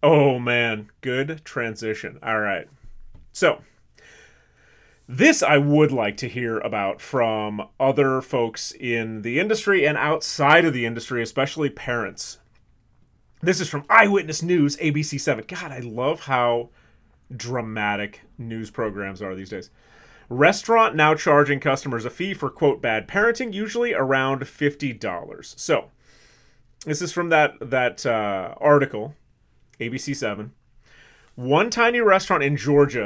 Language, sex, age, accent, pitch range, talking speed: English, male, 30-49, American, 115-155 Hz, 125 wpm